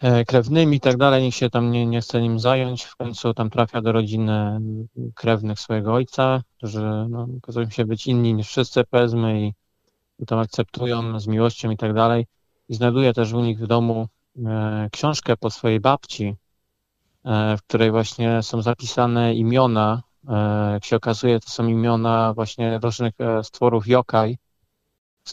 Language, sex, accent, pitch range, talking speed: Polish, male, native, 110-120 Hz, 165 wpm